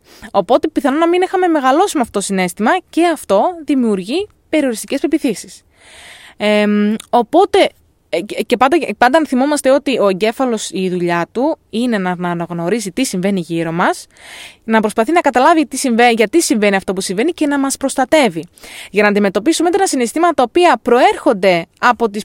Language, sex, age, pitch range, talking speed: Greek, female, 20-39, 210-320 Hz, 155 wpm